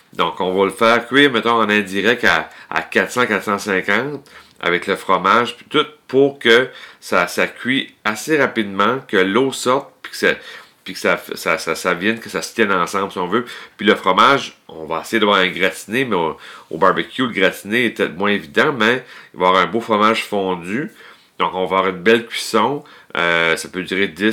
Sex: male